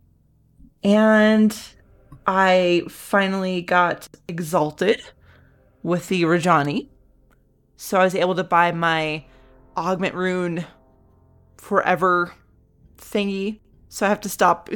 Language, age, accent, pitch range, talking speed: English, 20-39, American, 175-225 Hz, 100 wpm